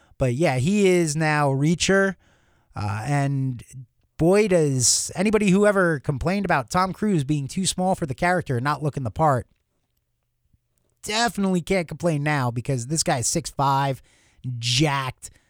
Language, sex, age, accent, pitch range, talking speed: English, male, 30-49, American, 125-185 Hz, 145 wpm